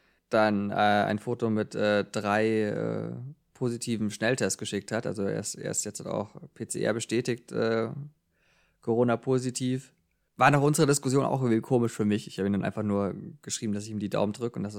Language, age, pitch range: German, 20-39, 105-125 Hz